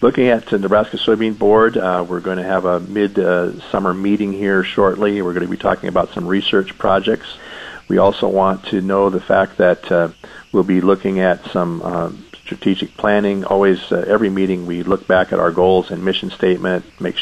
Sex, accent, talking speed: male, American, 200 wpm